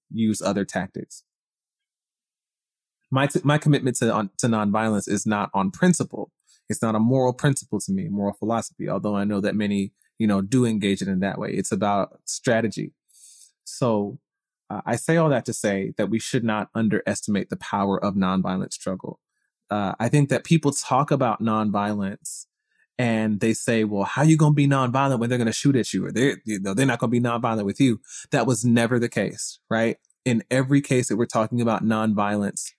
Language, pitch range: English, 105-125 Hz